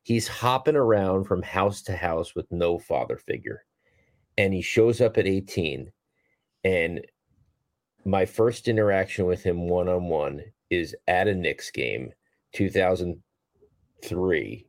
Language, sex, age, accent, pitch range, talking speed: English, male, 40-59, American, 95-140 Hz, 125 wpm